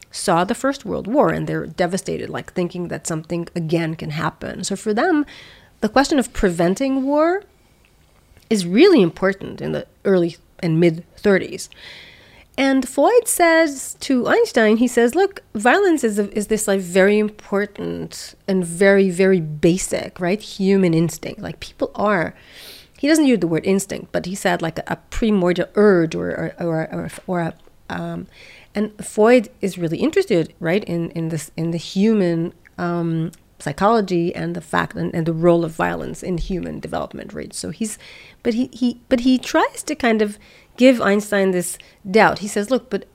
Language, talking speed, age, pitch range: English, 170 wpm, 30-49, 175-240 Hz